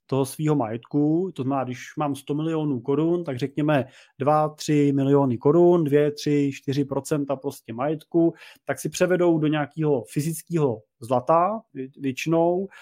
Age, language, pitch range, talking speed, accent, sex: 30-49, Czech, 140-170 Hz, 140 wpm, native, male